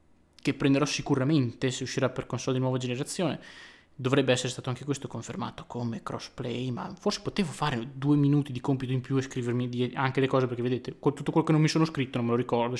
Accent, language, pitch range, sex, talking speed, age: native, Italian, 125-145 Hz, male, 215 wpm, 20-39